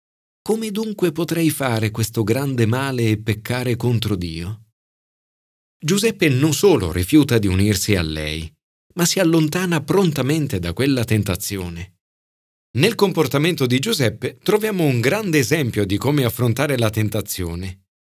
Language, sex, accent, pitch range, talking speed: Italian, male, native, 100-155 Hz, 130 wpm